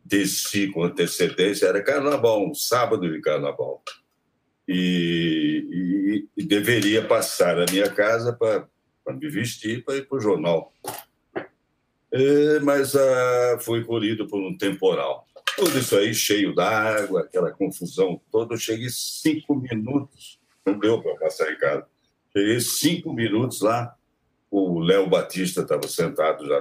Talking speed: 135 wpm